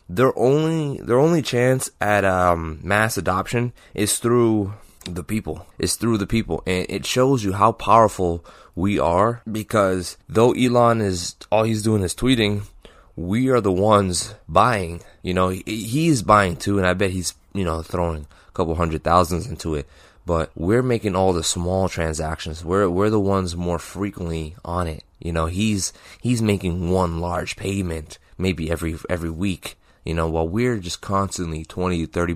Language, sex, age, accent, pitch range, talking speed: English, male, 20-39, American, 85-105 Hz, 170 wpm